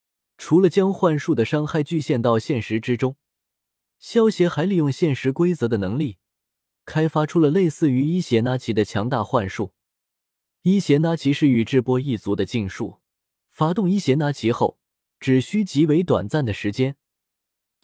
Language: Chinese